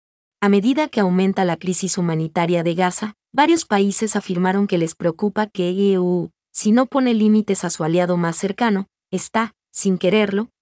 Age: 30-49